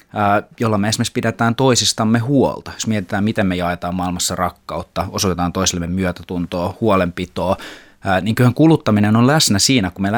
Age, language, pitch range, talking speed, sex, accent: 20-39, Finnish, 90-115 Hz, 145 wpm, male, native